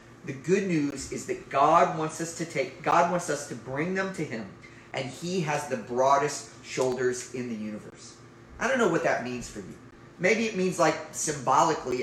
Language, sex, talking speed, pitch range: English, male, 200 wpm, 125-170 Hz